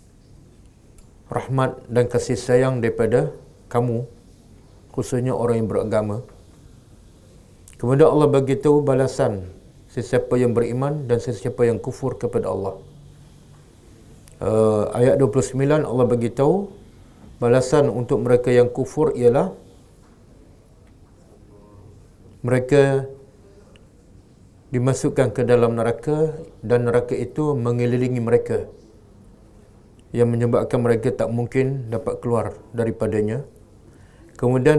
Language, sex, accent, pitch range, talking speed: English, male, Indonesian, 105-130 Hz, 90 wpm